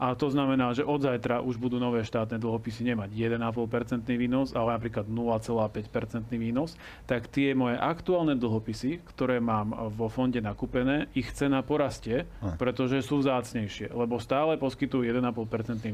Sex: male